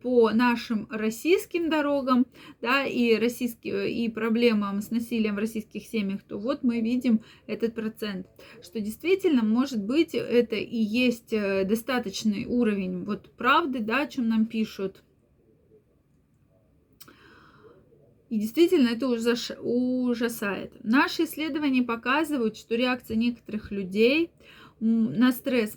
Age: 20-39